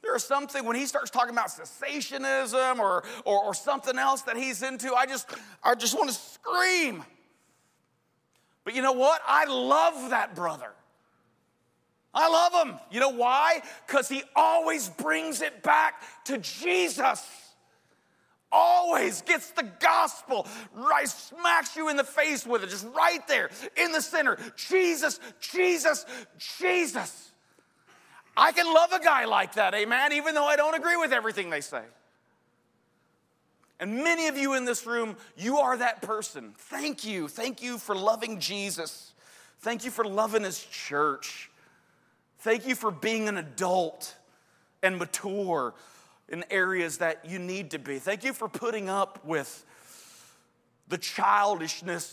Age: 40-59